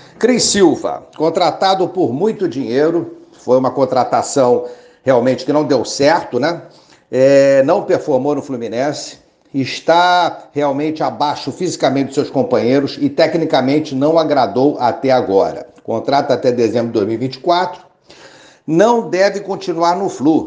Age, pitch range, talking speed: 60-79, 130-170 Hz, 125 wpm